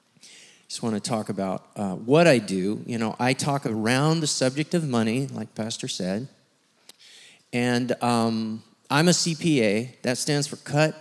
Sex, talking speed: male, 170 wpm